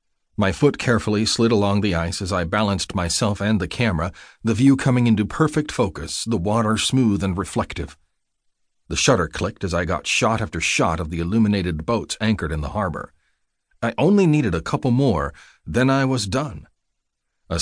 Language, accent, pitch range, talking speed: English, American, 85-120 Hz, 180 wpm